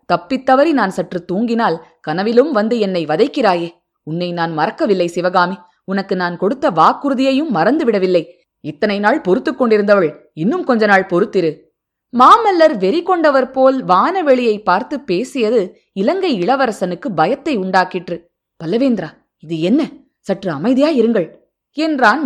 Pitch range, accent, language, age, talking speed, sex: 175-245 Hz, native, Tamil, 20-39, 115 wpm, female